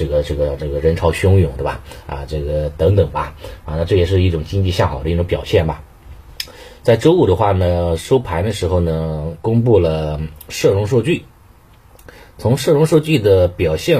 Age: 30-49